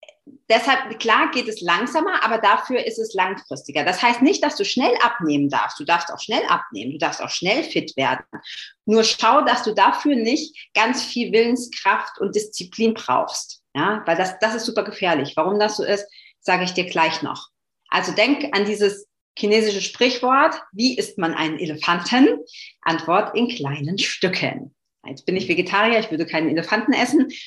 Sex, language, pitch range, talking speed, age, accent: female, German, 185-255 Hz, 175 wpm, 40-59, German